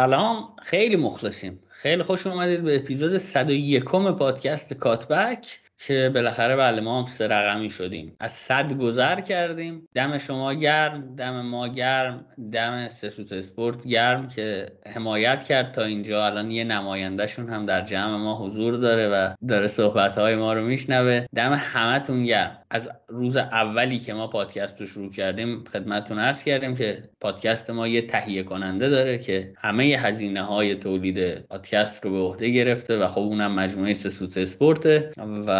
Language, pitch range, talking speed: Persian, 105-130 Hz, 155 wpm